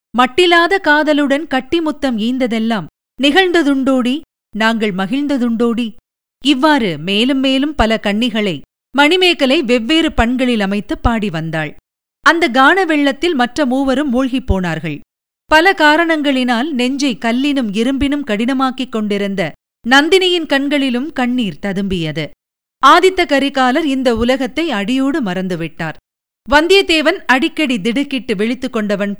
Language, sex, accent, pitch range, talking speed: Tamil, female, native, 215-290 Hz, 95 wpm